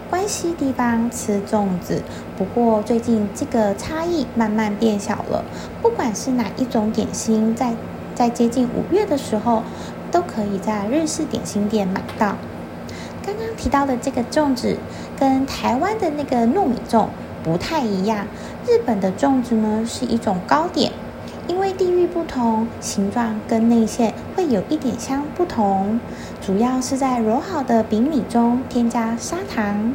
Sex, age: female, 20-39